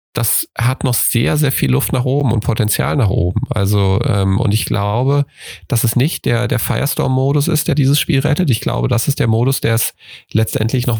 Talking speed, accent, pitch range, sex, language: 215 wpm, German, 110-130 Hz, male, German